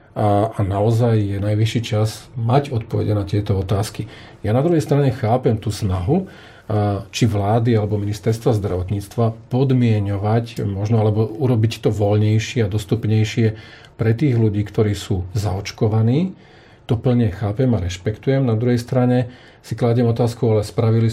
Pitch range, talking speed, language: 105-125 Hz, 140 wpm, Slovak